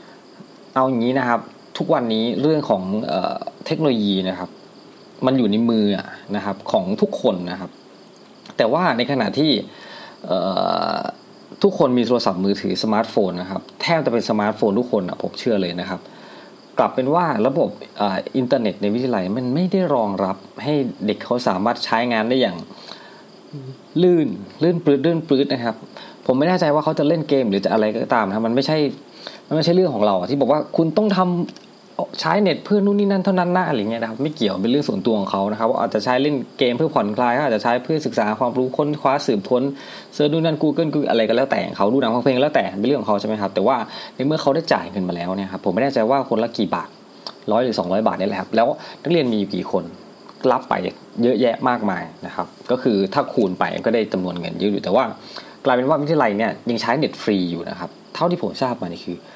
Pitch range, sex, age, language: 110-160 Hz, male, 20-39, Thai